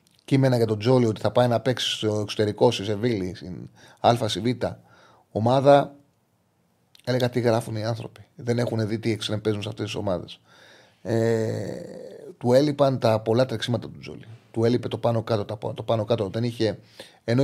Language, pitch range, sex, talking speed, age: Greek, 115-140 Hz, male, 150 wpm, 30-49